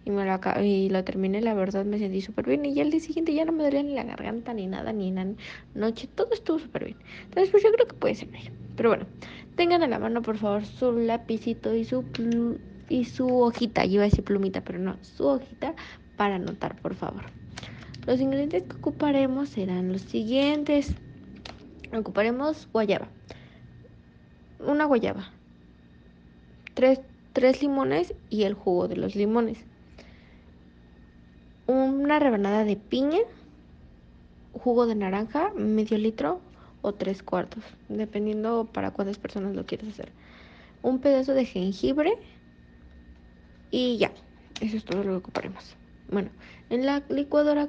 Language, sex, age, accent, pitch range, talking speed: Spanish, female, 20-39, Mexican, 190-265 Hz, 160 wpm